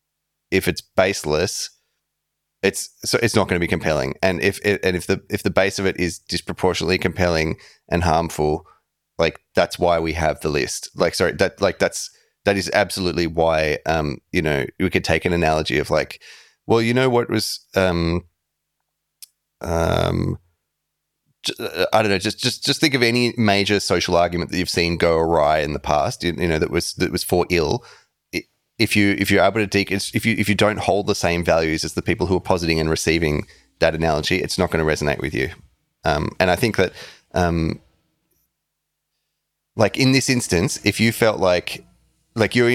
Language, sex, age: English, male, 30-49